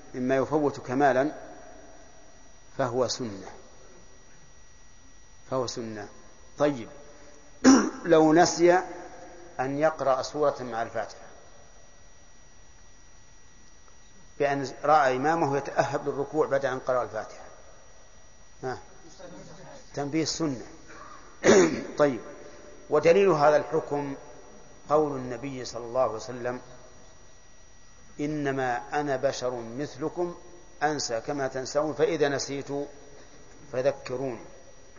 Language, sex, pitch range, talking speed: Arabic, male, 120-145 Hz, 80 wpm